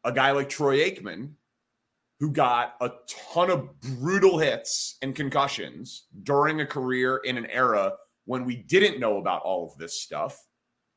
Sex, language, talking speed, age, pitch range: male, English, 160 wpm, 30-49, 130-160 Hz